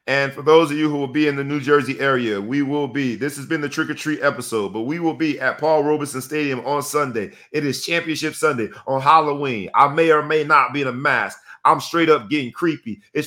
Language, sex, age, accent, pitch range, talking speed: English, male, 40-59, American, 115-155 Hz, 240 wpm